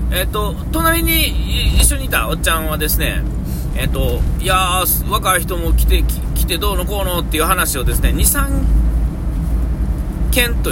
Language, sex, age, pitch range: Japanese, male, 40-59, 65-80 Hz